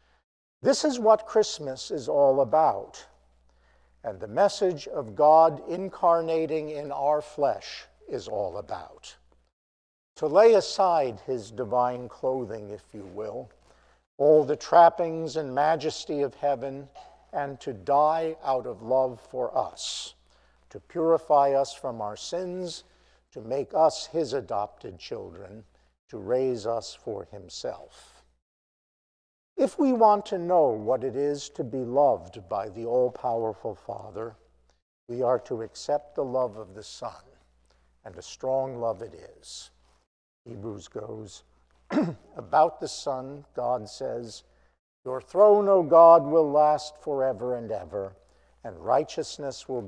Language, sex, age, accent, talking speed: English, male, 50-69, American, 130 wpm